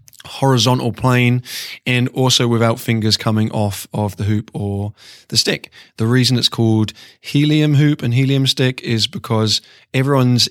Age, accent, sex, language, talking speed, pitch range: 20-39, British, male, English, 150 wpm, 110-135 Hz